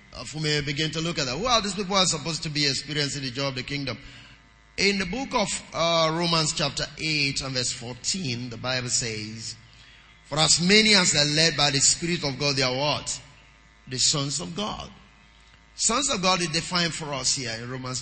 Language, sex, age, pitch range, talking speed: English, male, 30-49, 130-170 Hz, 210 wpm